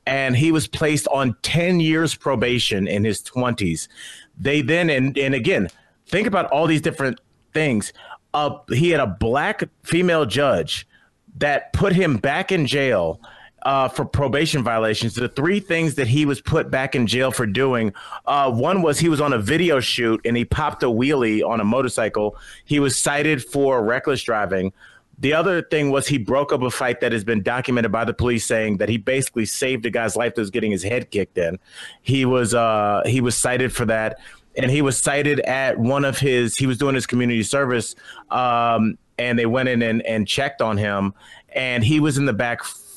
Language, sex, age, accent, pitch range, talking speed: English, male, 30-49, American, 115-140 Hz, 200 wpm